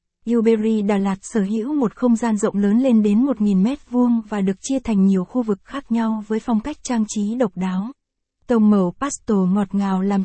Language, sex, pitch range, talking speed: Vietnamese, female, 200-235 Hz, 225 wpm